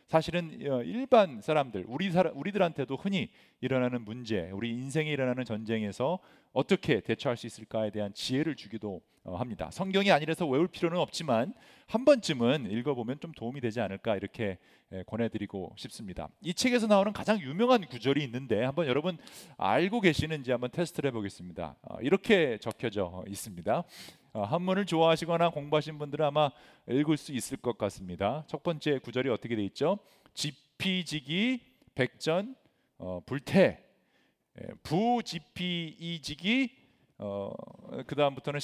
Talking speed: 115 wpm